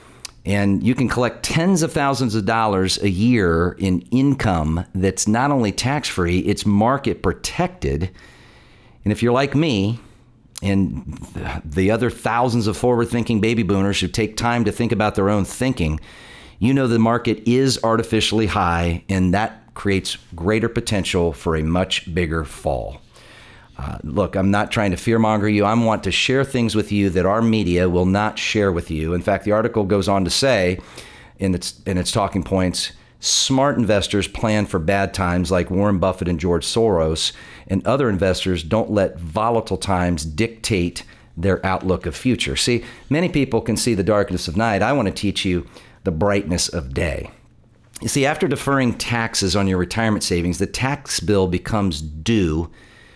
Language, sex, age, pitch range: English, male, 40-59, 90-115 Hz